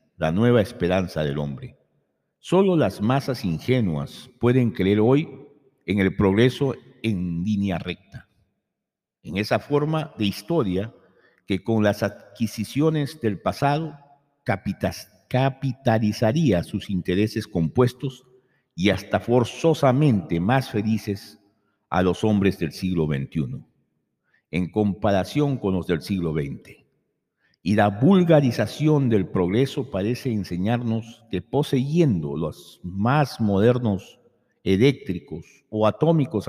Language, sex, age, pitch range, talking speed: Spanish, male, 50-69, 95-125 Hz, 110 wpm